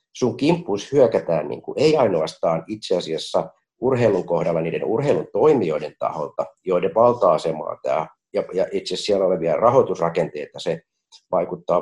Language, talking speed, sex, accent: Finnish, 130 wpm, male, native